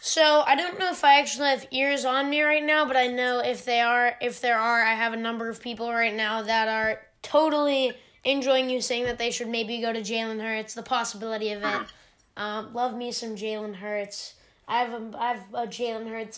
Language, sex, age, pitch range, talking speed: English, female, 10-29, 225-280 Hz, 225 wpm